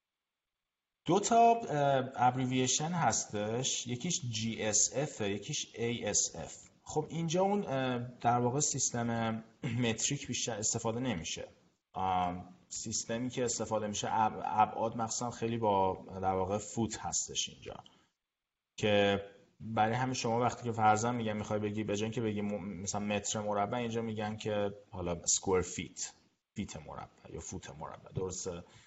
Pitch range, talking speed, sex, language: 100-125 Hz, 125 wpm, male, Persian